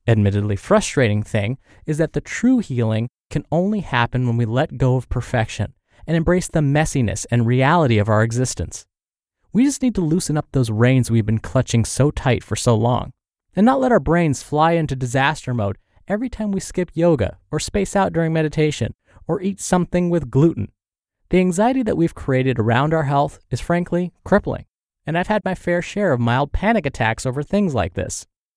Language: English